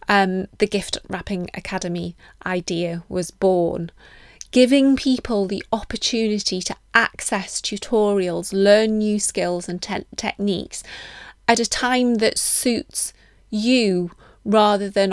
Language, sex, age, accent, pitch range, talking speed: English, female, 20-39, British, 185-215 Hz, 110 wpm